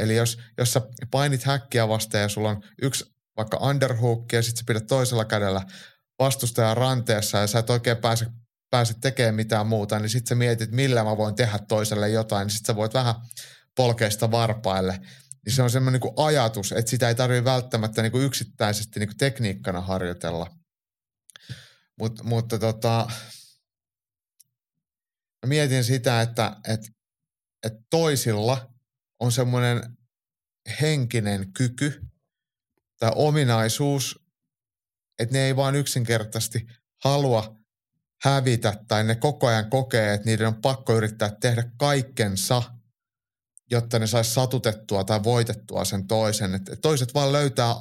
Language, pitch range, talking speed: Finnish, 110-130 Hz, 140 wpm